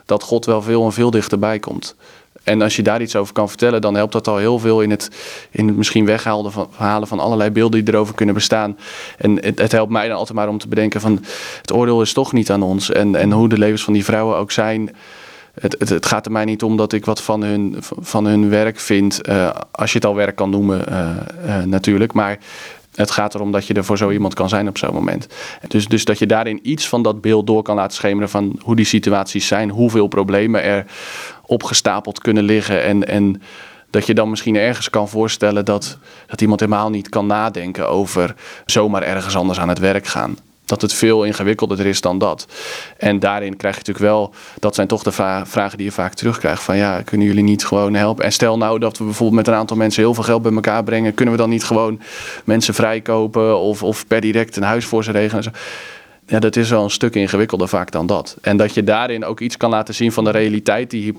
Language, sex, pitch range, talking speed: Dutch, male, 100-110 Hz, 235 wpm